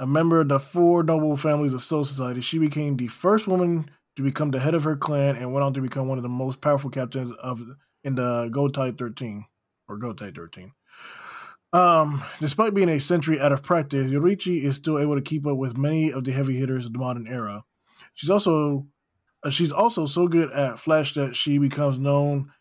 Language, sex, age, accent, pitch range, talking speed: English, male, 20-39, American, 125-145 Hz, 210 wpm